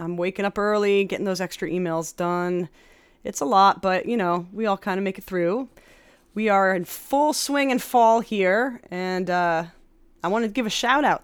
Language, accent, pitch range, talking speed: English, American, 180-230 Hz, 205 wpm